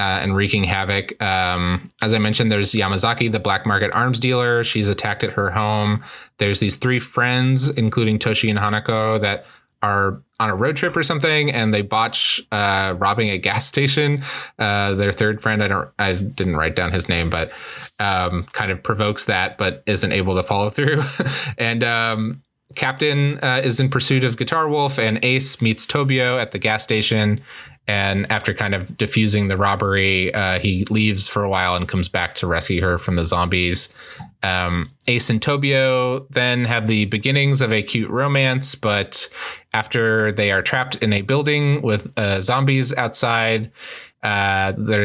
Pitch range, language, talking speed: 100-125 Hz, English, 175 wpm